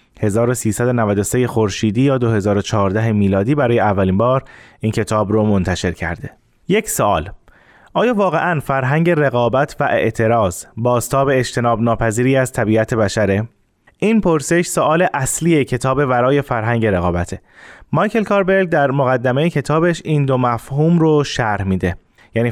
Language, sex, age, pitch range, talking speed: Persian, male, 20-39, 110-150 Hz, 125 wpm